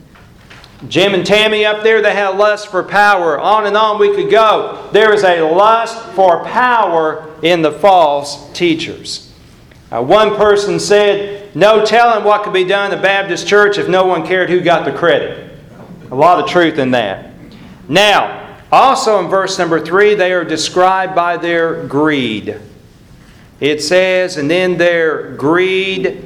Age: 40-59